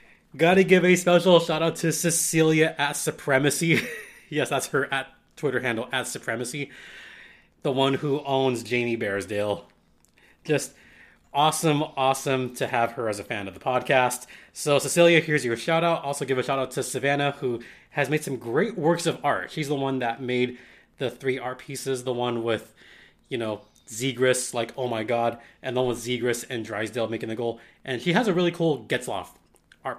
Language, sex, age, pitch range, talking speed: English, male, 30-49, 125-165 Hz, 180 wpm